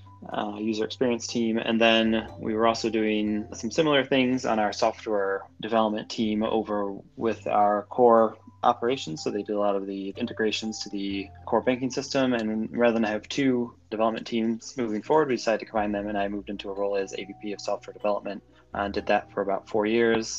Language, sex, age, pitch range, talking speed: English, male, 20-39, 105-115 Hz, 200 wpm